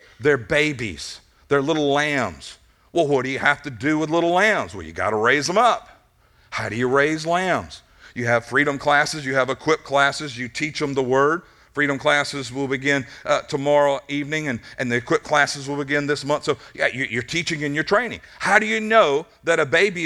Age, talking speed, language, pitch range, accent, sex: 50-69, 210 wpm, English, 135-165 Hz, American, male